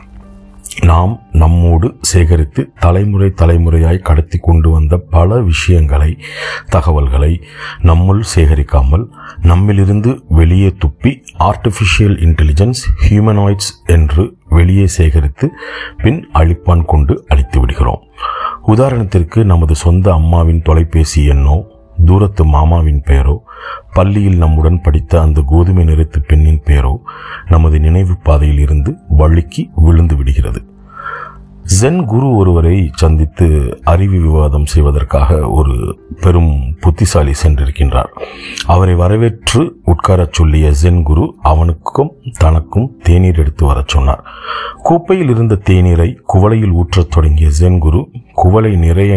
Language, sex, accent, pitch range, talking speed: Tamil, male, native, 80-95 Hz, 100 wpm